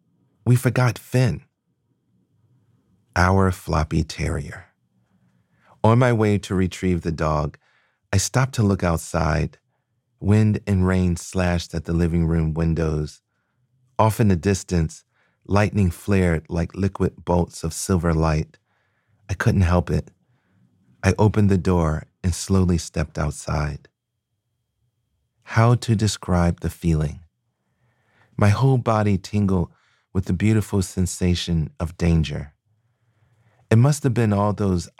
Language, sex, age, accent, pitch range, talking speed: English, male, 40-59, American, 85-110 Hz, 125 wpm